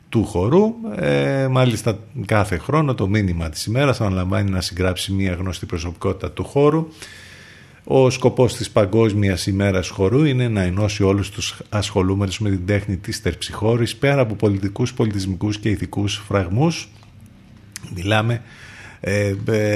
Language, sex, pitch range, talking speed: Greek, male, 95-125 Hz, 135 wpm